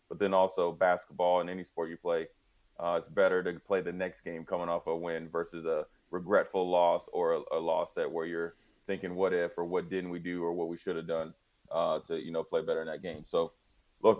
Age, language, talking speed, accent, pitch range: 20-39, English, 240 wpm, American, 90-100 Hz